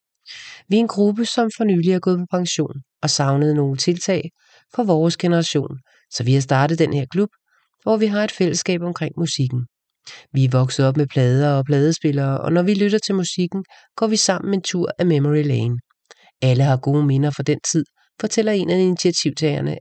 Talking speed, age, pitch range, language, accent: 195 wpm, 40-59, 145-180 Hz, English, Danish